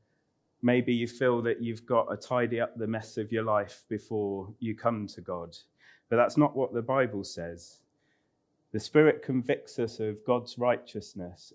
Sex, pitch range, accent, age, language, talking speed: male, 100-130 Hz, British, 30-49, English, 170 wpm